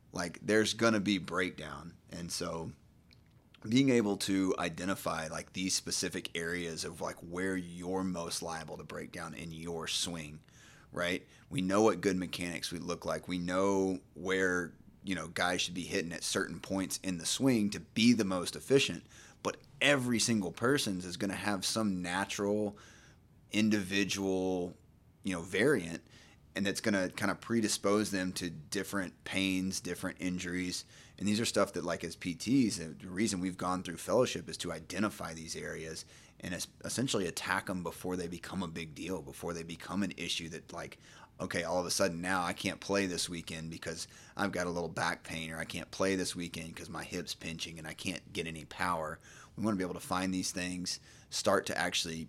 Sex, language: male, English